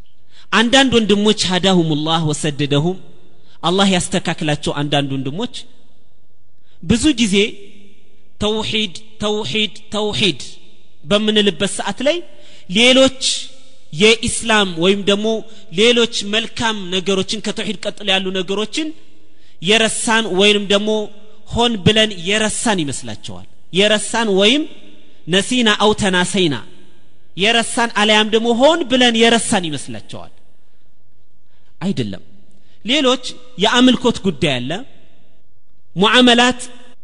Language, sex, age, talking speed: Amharic, male, 30-49, 80 wpm